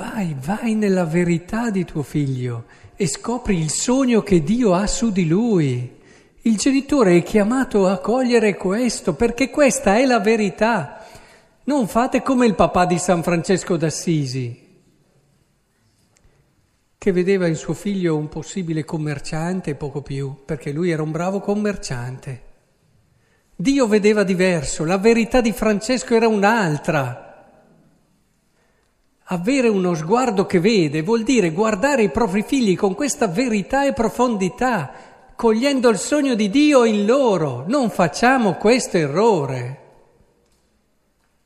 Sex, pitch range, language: male, 155-230 Hz, Italian